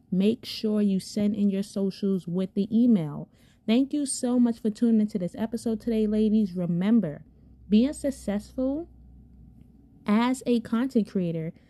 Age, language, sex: 20-39, English, female